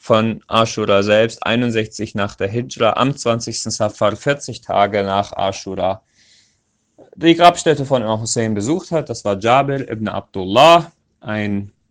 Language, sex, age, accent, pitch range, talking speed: German, male, 30-49, German, 100-125 Hz, 130 wpm